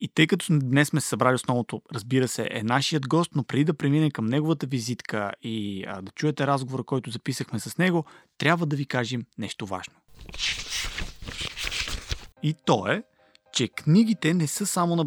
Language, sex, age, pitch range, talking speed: Bulgarian, male, 30-49, 125-170 Hz, 170 wpm